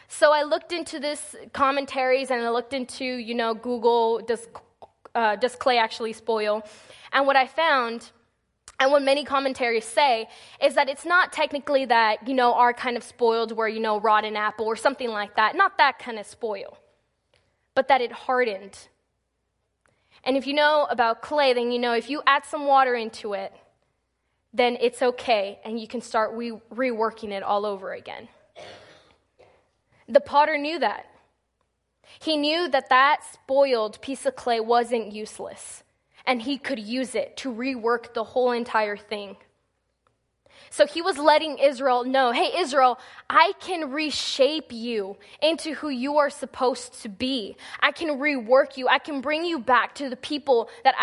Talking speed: 170 wpm